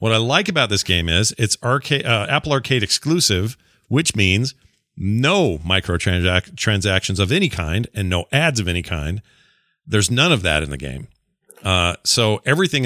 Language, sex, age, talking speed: English, male, 40-59, 170 wpm